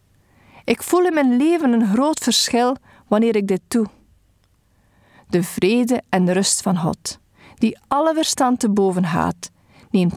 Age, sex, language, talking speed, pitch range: 40-59, female, Dutch, 150 wpm, 160-240 Hz